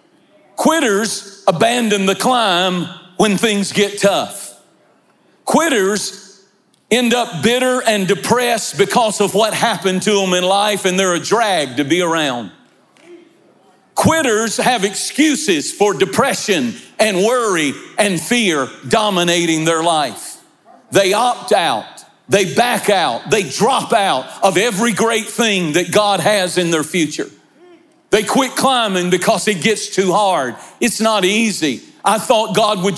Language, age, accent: English, 50-69, American